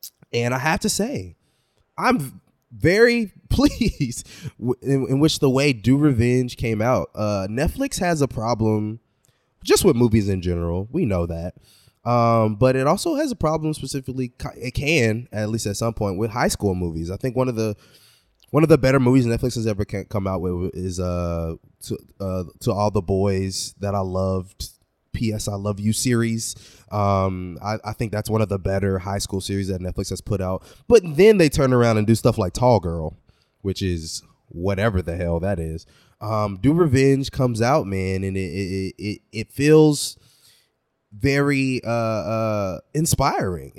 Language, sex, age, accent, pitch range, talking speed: English, male, 20-39, American, 100-135 Hz, 180 wpm